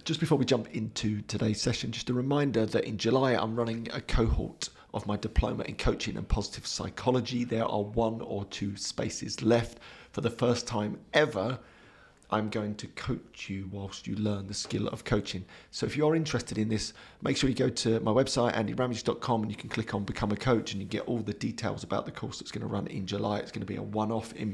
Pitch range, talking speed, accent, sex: 105-120 Hz, 230 wpm, British, male